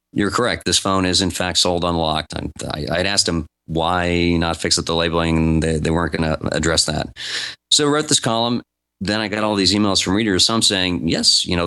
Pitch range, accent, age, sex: 80-100 Hz, American, 30-49, male